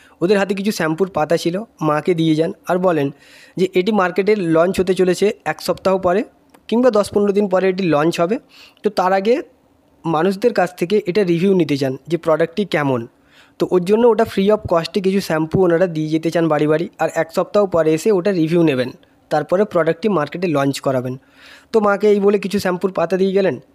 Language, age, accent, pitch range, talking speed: English, 20-39, Indian, 160-200 Hz, 145 wpm